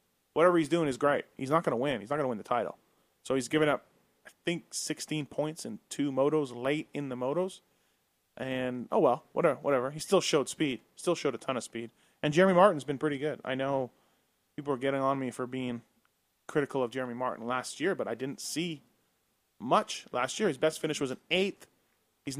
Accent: American